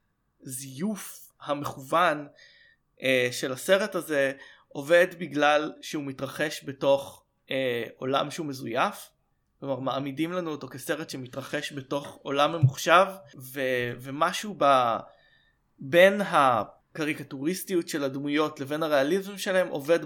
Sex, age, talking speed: male, 20-39, 105 wpm